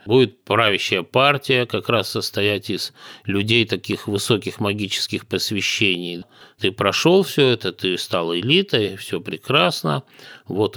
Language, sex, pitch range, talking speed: Russian, male, 95-130 Hz, 125 wpm